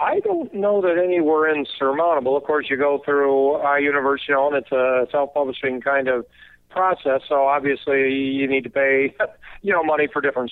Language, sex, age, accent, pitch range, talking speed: English, male, 50-69, American, 135-155 Hz, 190 wpm